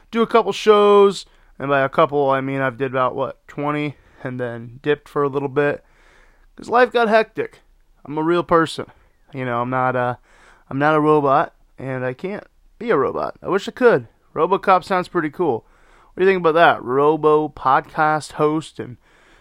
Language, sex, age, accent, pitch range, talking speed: English, male, 20-39, American, 140-185 Hz, 200 wpm